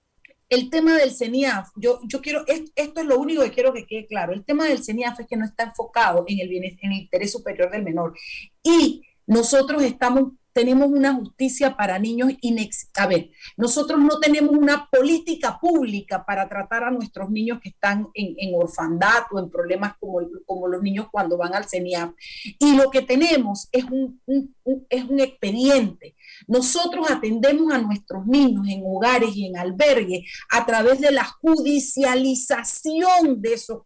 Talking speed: 180 wpm